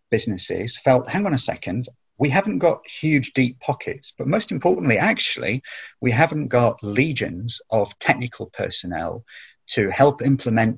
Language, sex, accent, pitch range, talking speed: English, male, British, 110-140 Hz, 145 wpm